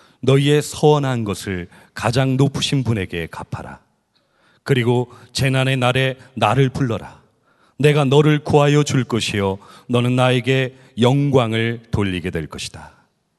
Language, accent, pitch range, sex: Korean, native, 110-140 Hz, male